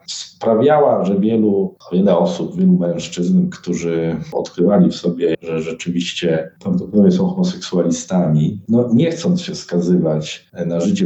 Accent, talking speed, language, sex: native, 115 wpm, Polish, male